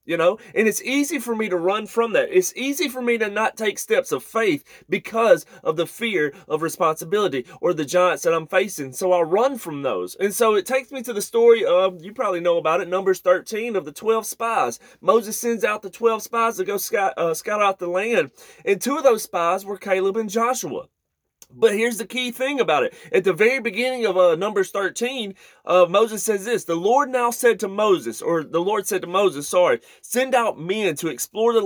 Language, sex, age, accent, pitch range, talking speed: English, male, 30-49, American, 185-235 Hz, 225 wpm